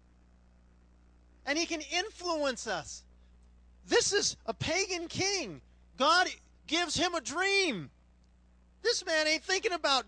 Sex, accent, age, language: male, American, 40-59, English